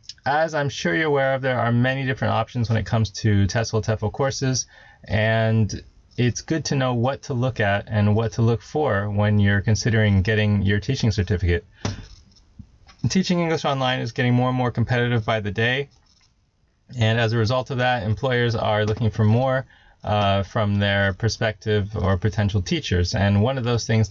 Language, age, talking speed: English, 20-39, 185 wpm